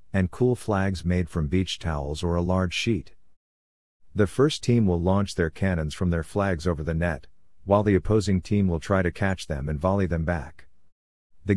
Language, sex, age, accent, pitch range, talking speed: English, male, 50-69, American, 85-105 Hz, 195 wpm